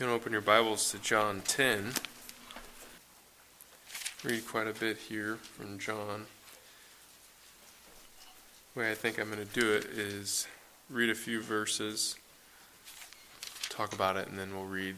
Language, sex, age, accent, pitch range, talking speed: English, male, 20-39, American, 100-110 Hz, 150 wpm